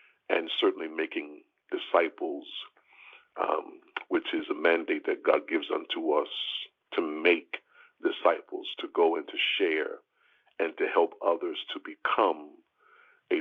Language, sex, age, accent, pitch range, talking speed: English, male, 50-69, American, 360-450 Hz, 130 wpm